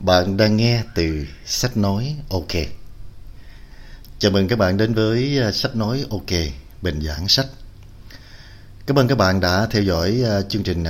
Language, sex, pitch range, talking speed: Vietnamese, male, 80-110 Hz, 155 wpm